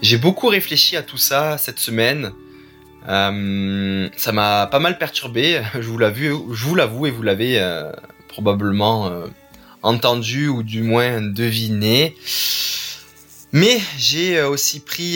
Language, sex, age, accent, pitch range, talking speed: French, male, 20-39, French, 110-145 Hz, 140 wpm